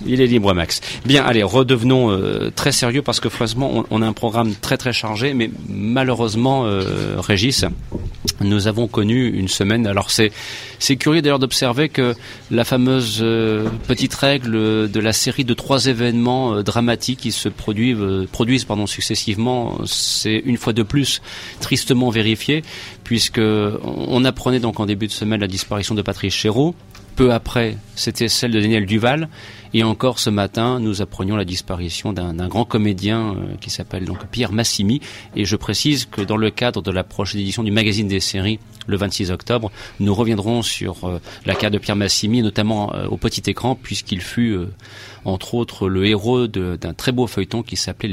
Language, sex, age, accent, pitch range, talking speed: French, male, 40-59, French, 100-120 Hz, 185 wpm